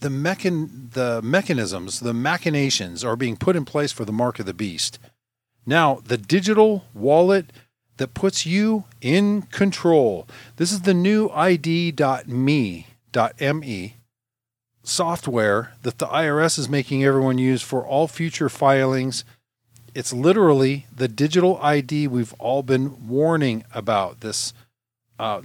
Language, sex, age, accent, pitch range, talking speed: English, male, 40-59, American, 120-155 Hz, 125 wpm